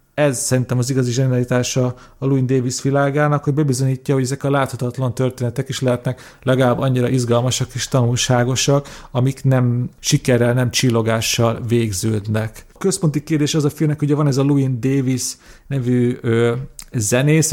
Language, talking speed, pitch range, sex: Hungarian, 145 wpm, 125-145 Hz, male